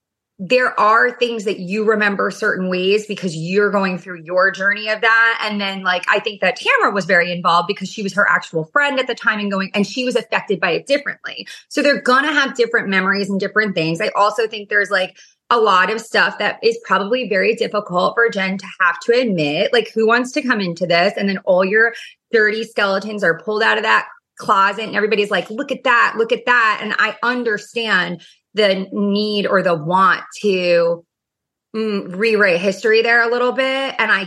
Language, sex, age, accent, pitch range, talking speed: English, female, 30-49, American, 195-240 Hz, 210 wpm